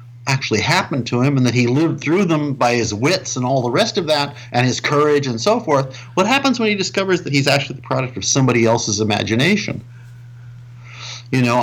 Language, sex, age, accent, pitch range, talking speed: English, male, 50-69, American, 120-160 Hz, 210 wpm